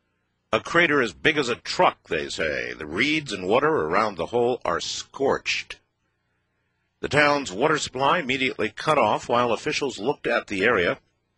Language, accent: English, American